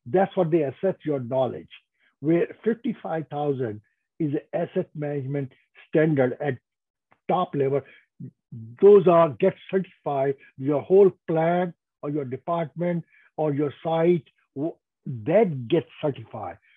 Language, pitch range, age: English, 140-185 Hz, 60-79